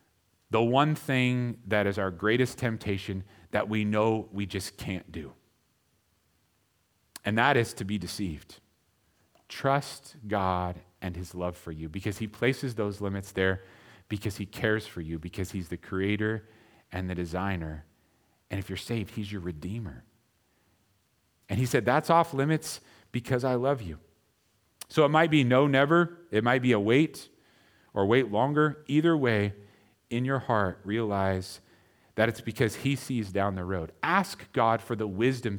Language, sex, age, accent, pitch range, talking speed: English, male, 40-59, American, 95-120 Hz, 160 wpm